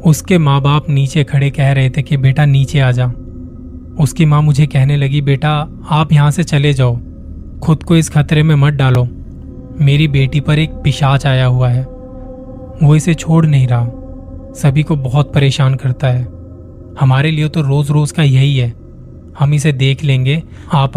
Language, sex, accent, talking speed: Hindi, male, native, 180 wpm